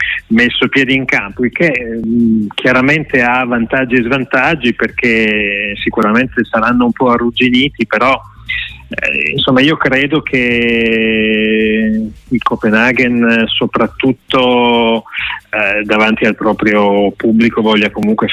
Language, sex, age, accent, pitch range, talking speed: Italian, male, 30-49, native, 110-140 Hz, 110 wpm